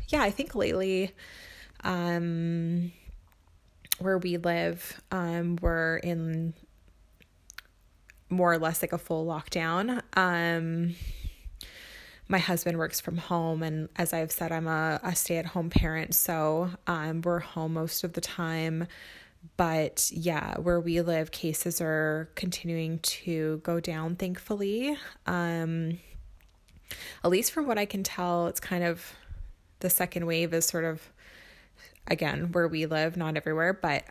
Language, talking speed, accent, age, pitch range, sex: English, 135 wpm, American, 20-39, 160-175 Hz, female